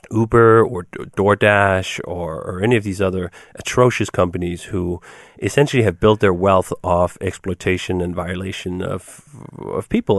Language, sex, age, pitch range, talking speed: English, male, 30-49, 105-145 Hz, 140 wpm